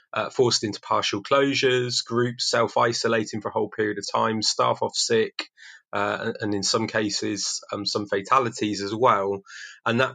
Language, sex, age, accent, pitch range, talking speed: English, male, 20-39, British, 105-120 Hz, 165 wpm